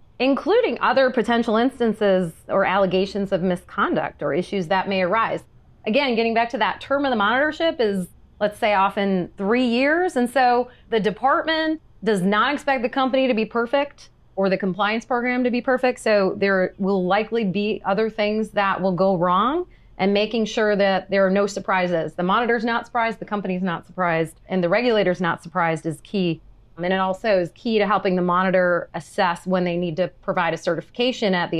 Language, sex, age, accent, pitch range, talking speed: English, female, 30-49, American, 185-230 Hz, 190 wpm